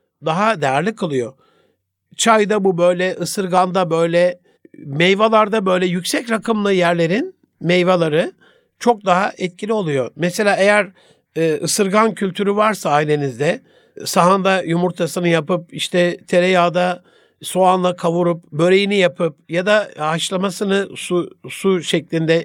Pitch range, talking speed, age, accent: 170-210 Hz, 105 wpm, 60-79, native